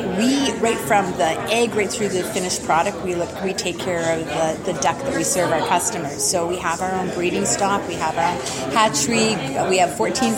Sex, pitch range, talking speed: female, 180-210 Hz, 220 wpm